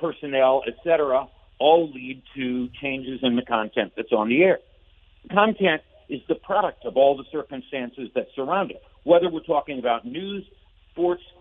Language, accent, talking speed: English, American, 160 wpm